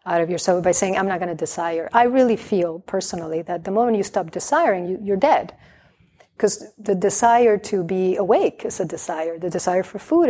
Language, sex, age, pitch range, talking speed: English, female, 40-59, 180-225 Hz, 210 wpm